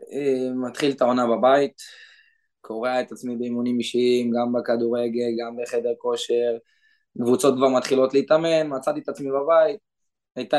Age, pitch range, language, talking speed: 20-39, 125-155 Hz, Hebrew, 130 wpm